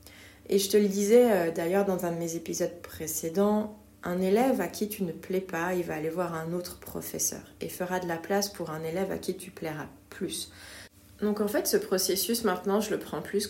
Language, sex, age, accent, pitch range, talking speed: French, female, 30-49, French, 165-205 Hz, 220 wpm